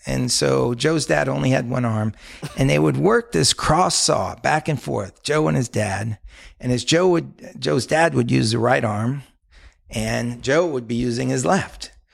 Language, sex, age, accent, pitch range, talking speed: English, male, 50-69, American, 110-150 Hz, 200 wpm